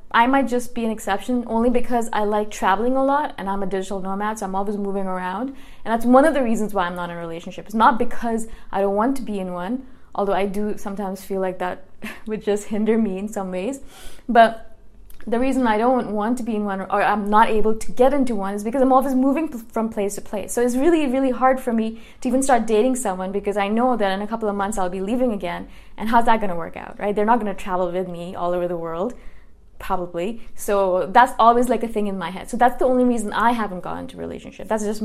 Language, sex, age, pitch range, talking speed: English, female, 20-39, 195-250 Hz, 260 wpm